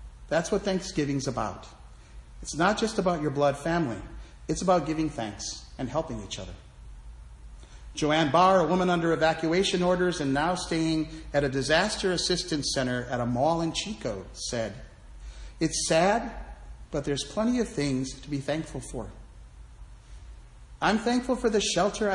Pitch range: 105-175 Hz